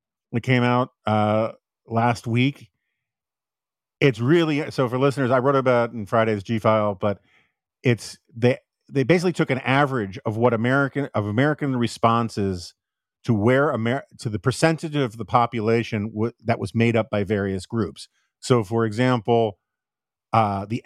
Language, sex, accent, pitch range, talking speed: English, male, American, 110-135 Hz, 160 wpm